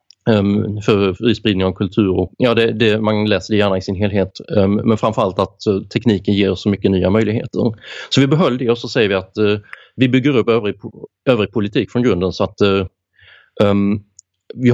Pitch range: 95-120 Hz